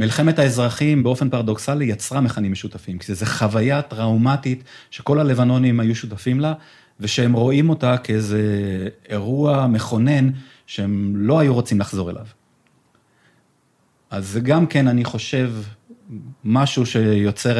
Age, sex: 30-49, male